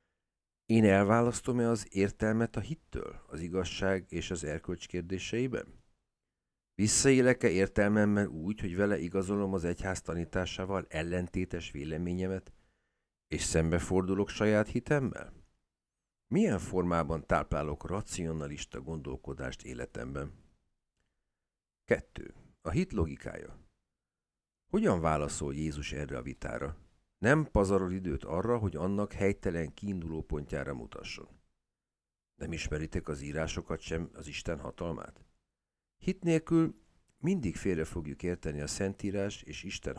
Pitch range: 80-100 Hz